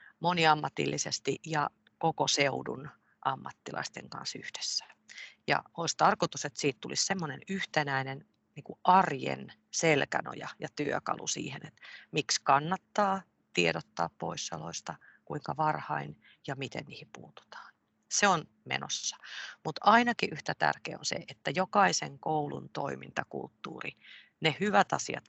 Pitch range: 150-185 Hz